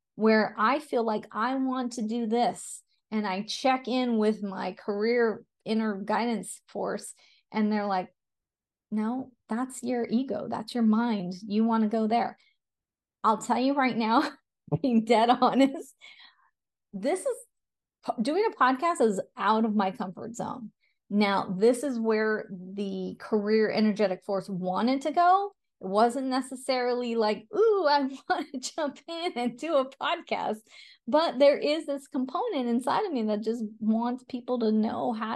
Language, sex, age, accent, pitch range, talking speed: English, female, 30-49, American, 220-270 Hz, 160 wpm